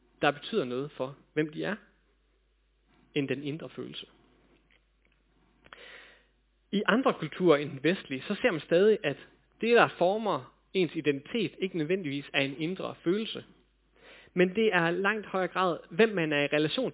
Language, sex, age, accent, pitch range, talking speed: Danish, male, 30-49, native, 145-195 Hz, 155 wpm